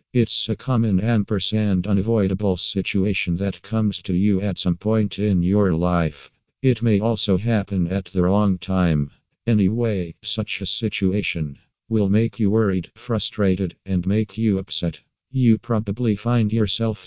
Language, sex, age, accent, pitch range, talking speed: English, male, 50-69, American, 95-110 Hz, 145 wpm